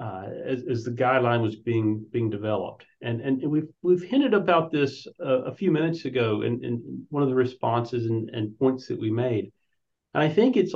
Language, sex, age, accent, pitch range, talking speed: English, male, 50-69, American, 125-170 Hz, 205 wpm